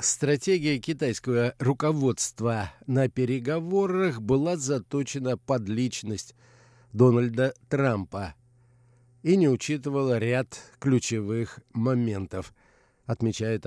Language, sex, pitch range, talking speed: Russian, male, 120-145 Hz, 80 wpm